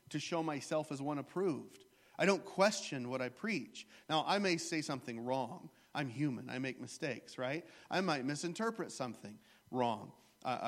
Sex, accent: male, American